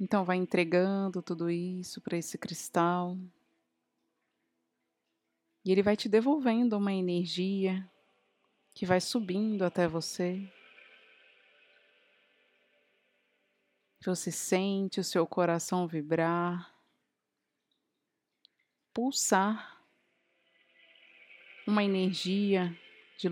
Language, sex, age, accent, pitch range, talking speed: Portuguese, female, 20-39, Brazilian, 170-215 Hz, 75 wpm